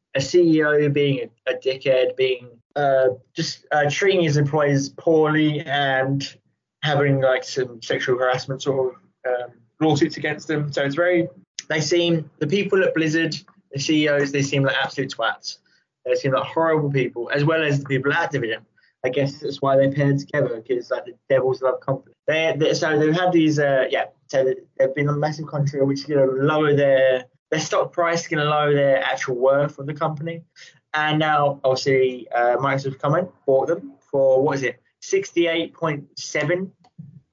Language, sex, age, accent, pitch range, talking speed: English, male, 20-39, British, 135-165 Hz, 180 wpm